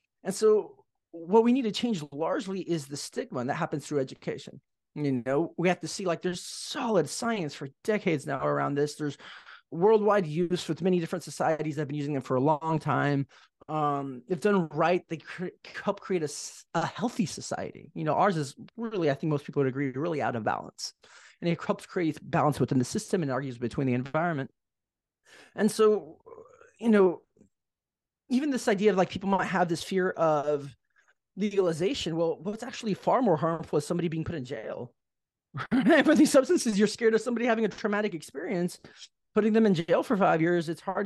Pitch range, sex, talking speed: 150-210 Hz, male, 200 wpm